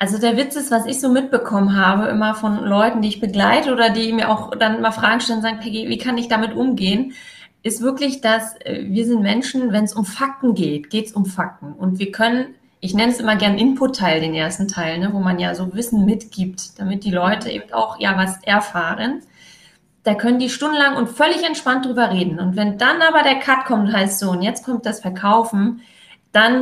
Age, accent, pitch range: 30-49, German, 205-255 Hz